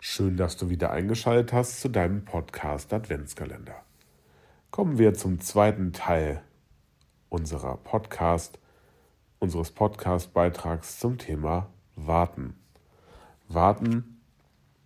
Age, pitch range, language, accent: 40-59, 85-105 Hz, German, German